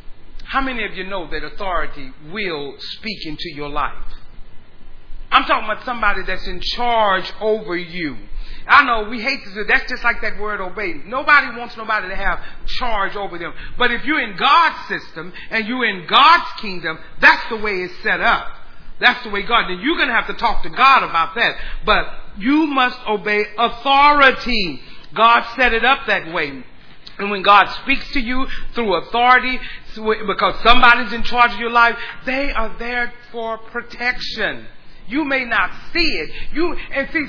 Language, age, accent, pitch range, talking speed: English, 40-59, American, 200-260 Hz, 180 wpm